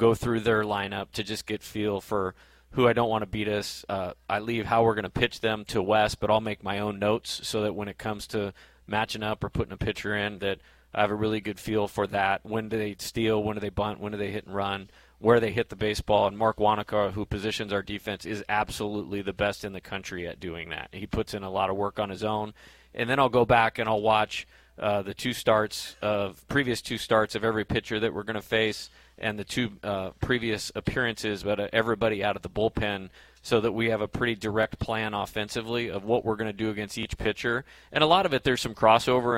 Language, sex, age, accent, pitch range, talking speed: English, male, 30-49, American, 100-110 Hz, 250 wpm